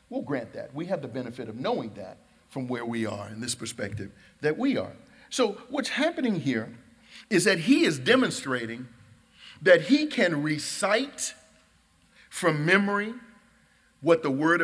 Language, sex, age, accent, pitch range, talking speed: English, male, 50-69, American, 140-205 Hz, 155 wpm